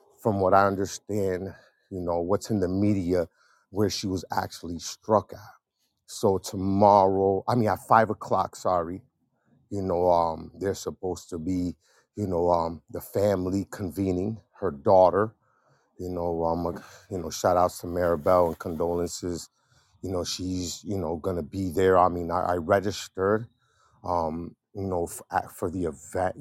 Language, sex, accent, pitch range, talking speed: English, male, American, 85-95 Hz, 160 wpm